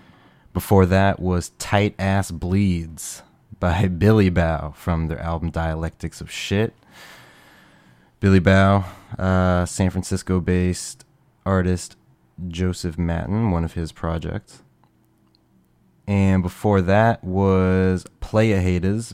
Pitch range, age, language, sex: 85-100 Hz, 20-39, English, male